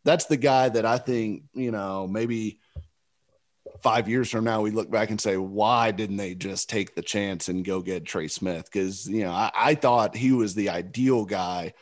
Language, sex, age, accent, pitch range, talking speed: English, male, 30-49, American, 95-120 Hz, 210 wpm